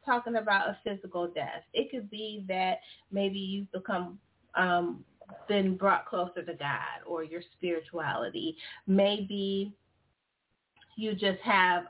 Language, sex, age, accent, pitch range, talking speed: English, female, 30-49, American, 180-230 Hz, 125 wpm